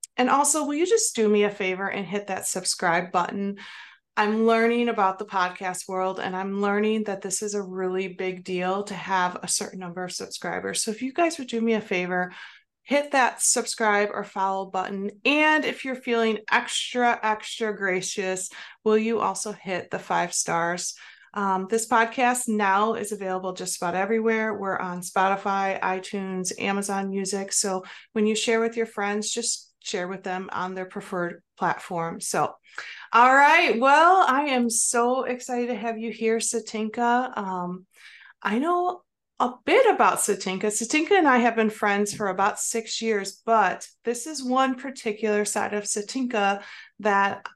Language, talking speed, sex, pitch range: English, 170 wpm, female, 195-235 Hz